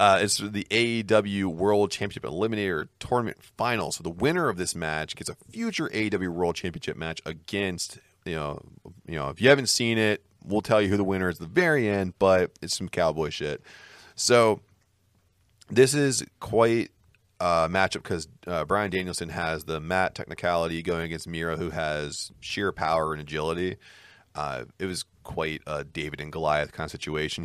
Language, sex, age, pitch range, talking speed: English, male, 30-49, 85-105 Hz, 185 wpm